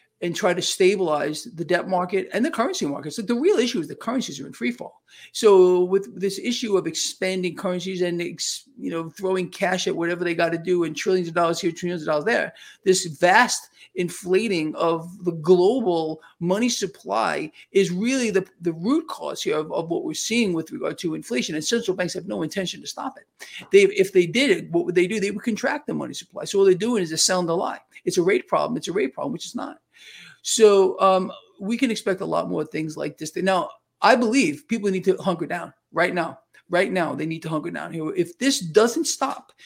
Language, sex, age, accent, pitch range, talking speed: English, male, 50-69, American, 175-210 Hz, 230 wpm